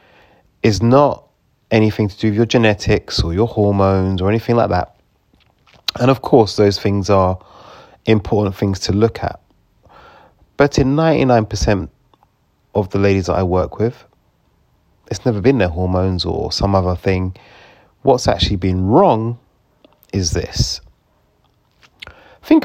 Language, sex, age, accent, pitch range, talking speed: English, male, 30-49, British, 95-115 Hz, 140 wpm